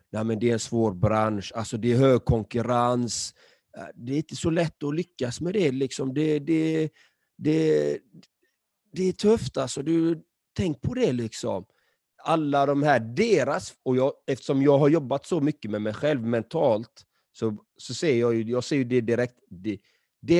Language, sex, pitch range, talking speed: Swedish, male, 115-155 Hz, 180 wpm